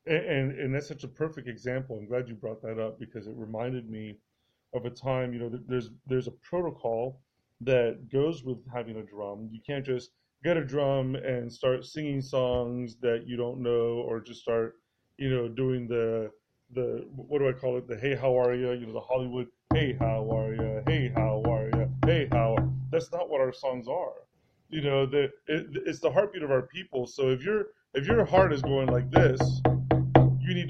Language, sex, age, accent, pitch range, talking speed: English, male, 30-49, American, 120-145 Hz, 210 wpm